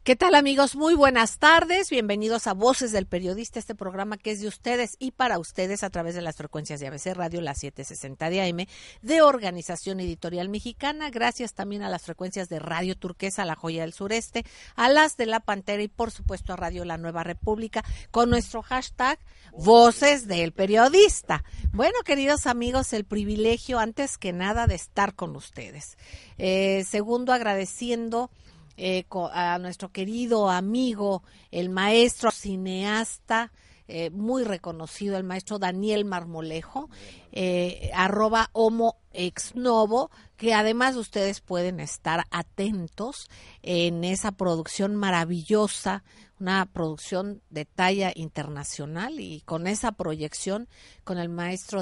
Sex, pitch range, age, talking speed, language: female, 175-230 Hz, 50-69, 145 wpm, Spanish